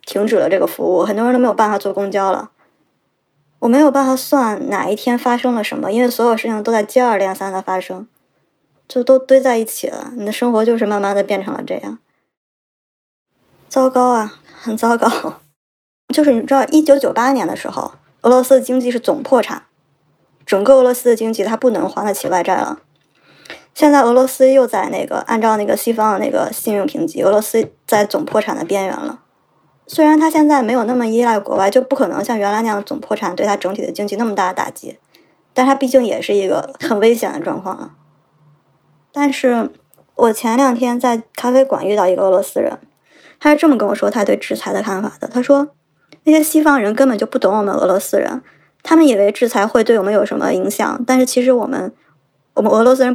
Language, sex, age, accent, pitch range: Chinese, male, 20-39, native, 205-265 Hz